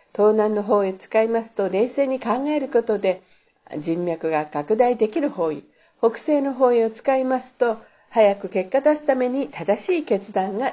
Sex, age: female, 50-69